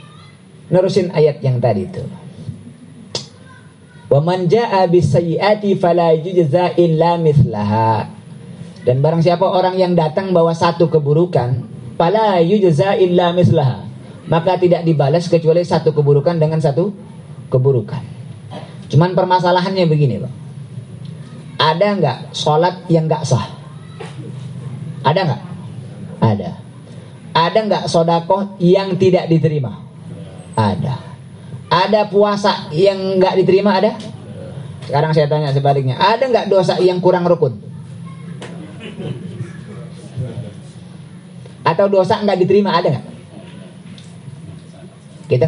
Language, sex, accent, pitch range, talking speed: Indonesian, male, native, 150-185 Hz, 90 wpm